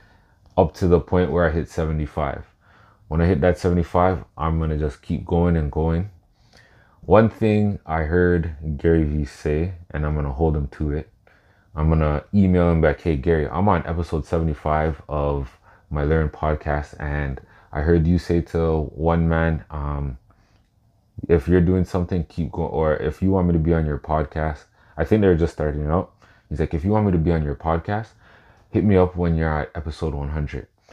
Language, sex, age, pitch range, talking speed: English, male, 20-39, 75-90 Hz, 195 wpm